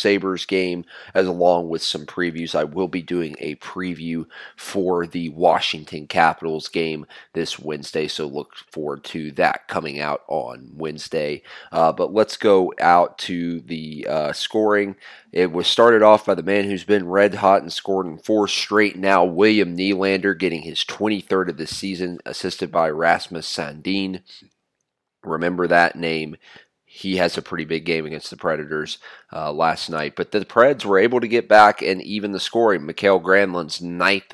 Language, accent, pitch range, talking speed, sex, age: English, American, 85-100 Hz, 170 wpm, male, 30-49